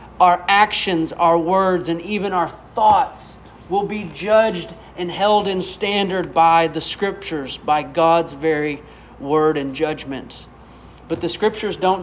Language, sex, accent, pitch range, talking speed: English, male, American, 160-200 Hz, 140 wpm